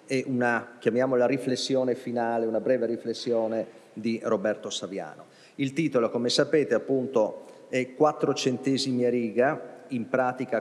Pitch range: 110-120 Hz